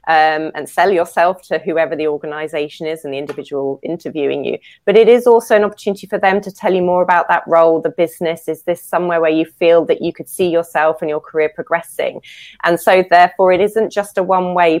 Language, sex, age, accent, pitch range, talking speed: English, female, 20-39, British, 160-195 Hz, 220 wpm